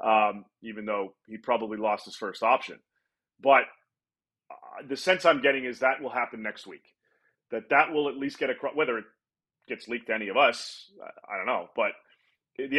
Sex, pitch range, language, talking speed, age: male, 115-135 Hz, English, 190 wpm, 30-49